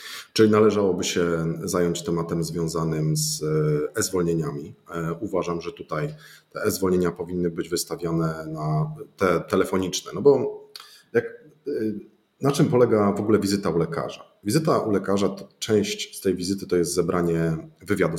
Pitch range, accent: 90-120 Hz, native